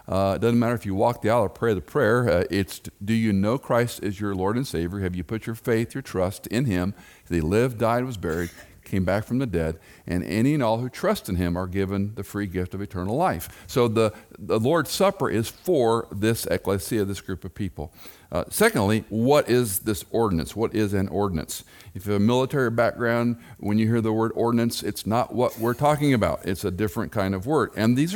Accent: American